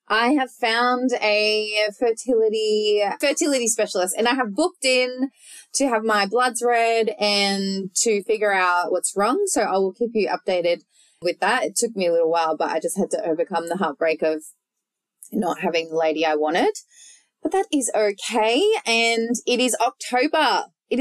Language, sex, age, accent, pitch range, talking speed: English, female, 20-39, Australian, 170-245 Hz, 175 wpm